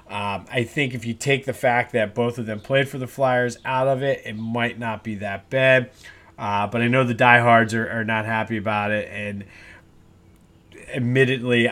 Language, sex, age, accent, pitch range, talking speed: English, male, 30-49, American, 110-130 Hz, 200 wpm